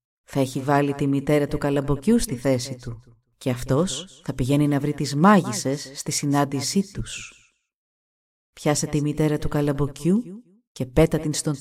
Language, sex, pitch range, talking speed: Greek, female, 130-175 Hz, 155 wpm